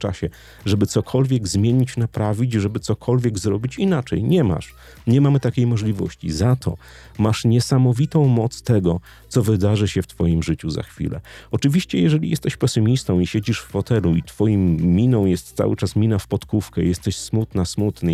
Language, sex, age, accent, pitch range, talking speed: Polish, male, 40-59, native, 95-125 Hz, 160 wpm